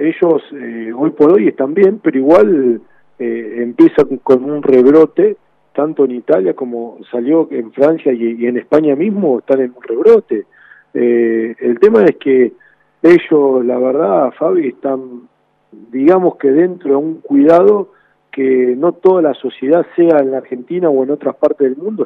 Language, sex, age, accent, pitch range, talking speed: Spanish, male, 50-69, Argentinian, 125-170 Hz, 165 wpm